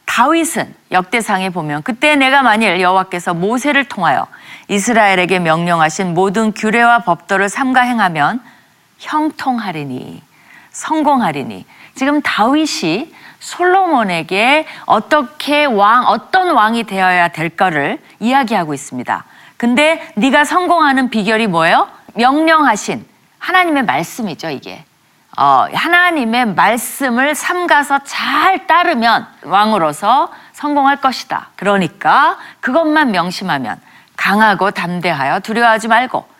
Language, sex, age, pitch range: Korean, female, 40-59, 185-295 Hz